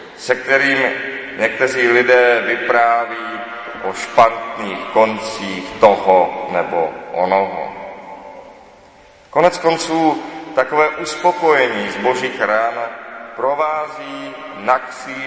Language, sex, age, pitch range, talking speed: Czech, male, 30-49, 100-140 Hz, 80 wpm